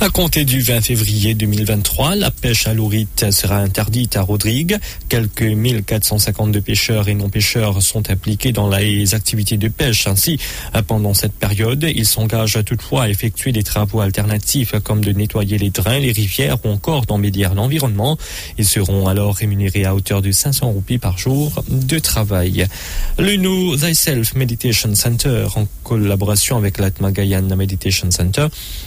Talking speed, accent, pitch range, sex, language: 155 wpm, French, 100-120 Hz, male, English